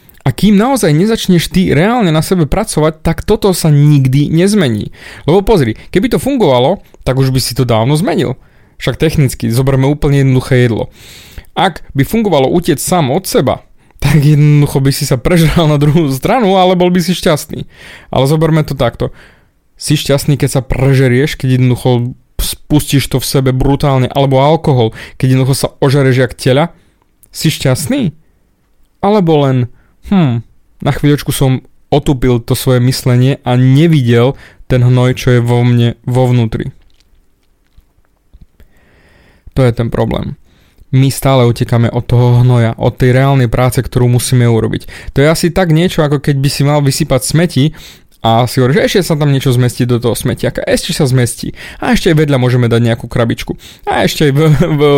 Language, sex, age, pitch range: Slovak, male, 30-49, 125-155 Hz